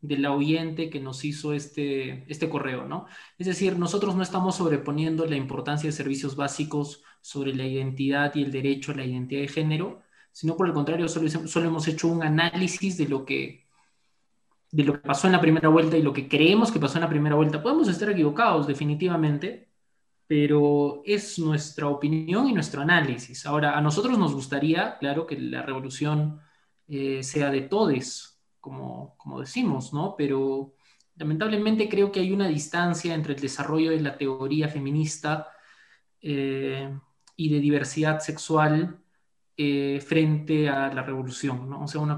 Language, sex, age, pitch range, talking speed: Spanish, male, 20-39, 140-160 Hz, 165 wpm